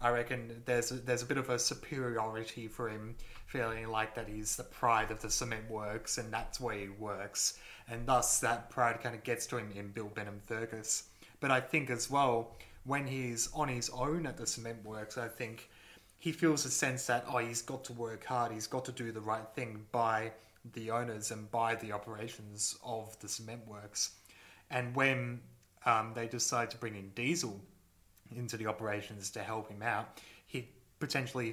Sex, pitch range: male, 110-125 Hz